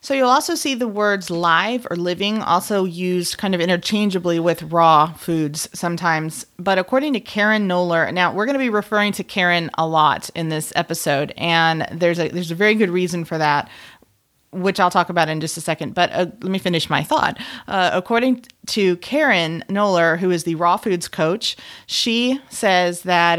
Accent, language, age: American, English, 30-49